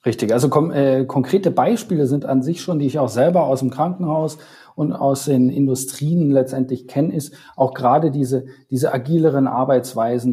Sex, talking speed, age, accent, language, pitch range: male, 170 wpm, 40-59, German, German, 130-150 Hz